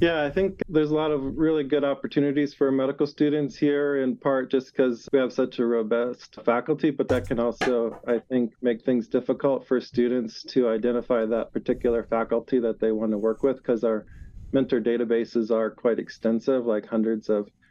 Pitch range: 115-130 Hz